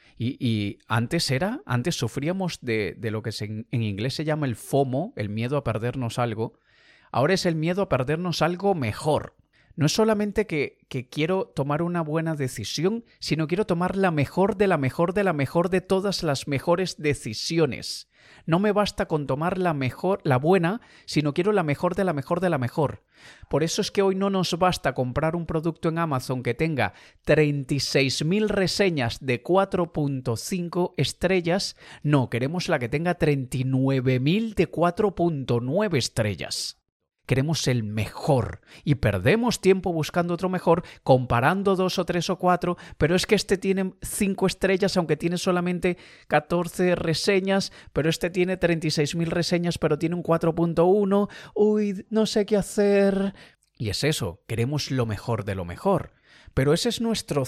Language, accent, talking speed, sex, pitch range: Spanish, Spanish, 165 wpm, male, 130-185 Hz